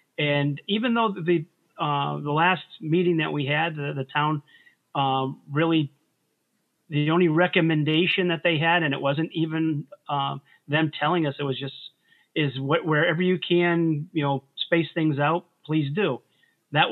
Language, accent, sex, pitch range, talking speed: English, American, male, 140-170 Hz, 165 wpm